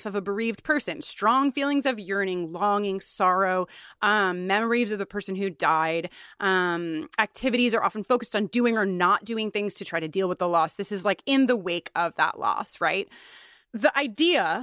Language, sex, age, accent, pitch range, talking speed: English, female, 30-49, American, 185-265 Hz, 195 wpm